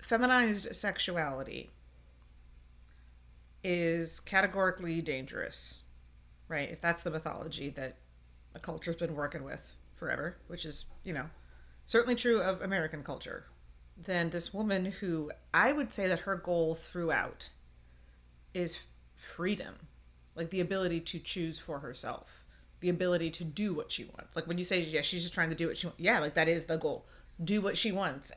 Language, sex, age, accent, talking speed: English, female, 30-49, American, 165 wpm